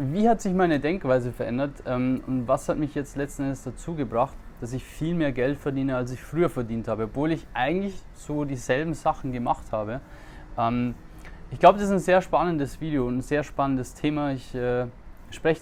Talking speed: 200 wpm